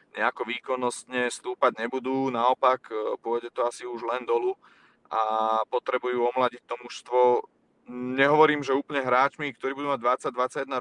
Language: Czech